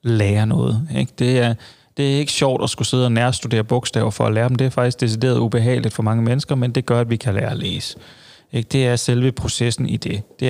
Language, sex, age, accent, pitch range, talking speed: Danish, male, 30-49, native, 115-130 Hz, 250 wpm